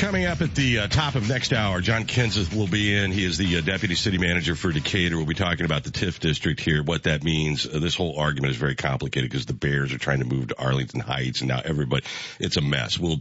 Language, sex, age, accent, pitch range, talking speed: English, male, 50-69, American, 75-100 Hz, 265 wpm